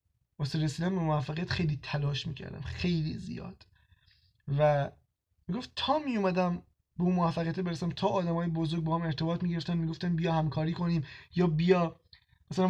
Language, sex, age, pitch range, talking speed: Persian, male, 20-39, 155-190 Hz, 145 wpm